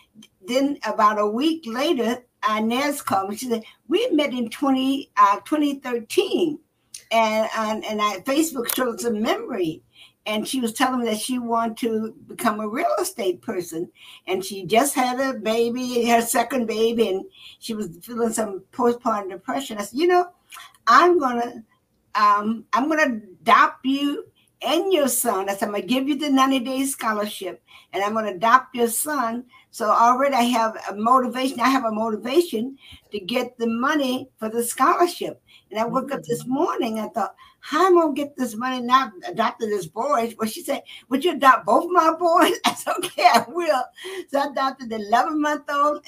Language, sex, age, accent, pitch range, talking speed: English, female, 60-79, American, 225-290 Hz, 180 wpm